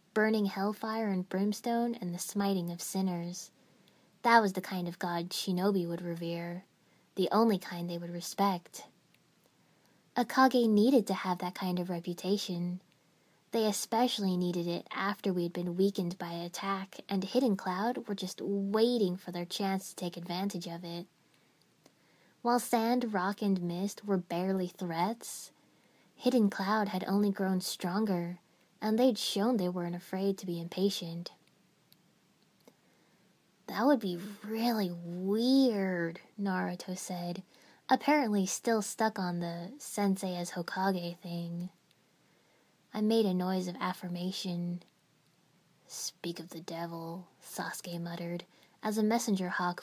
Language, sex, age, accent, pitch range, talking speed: English, female, 20-39, American, 175-210 Hz, 135 wpm